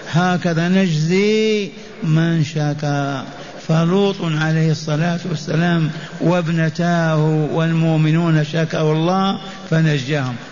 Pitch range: 155-185 Hz